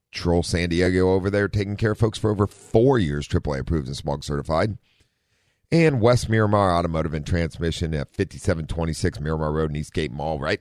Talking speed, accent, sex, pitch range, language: 180 wpm, American, male, 80-105 Hz, English